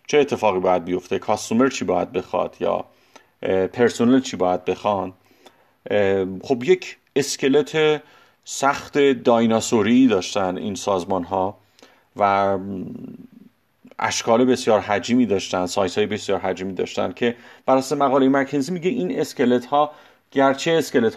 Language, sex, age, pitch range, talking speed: Persian, male, 40-59, 105-135 Hz, 115 wpm